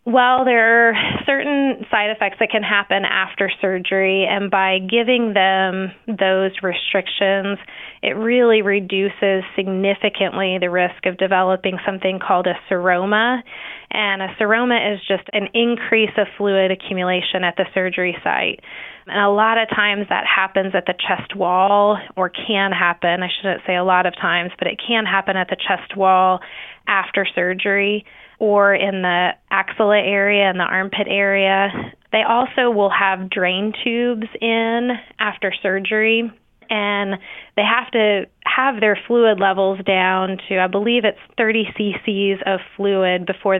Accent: American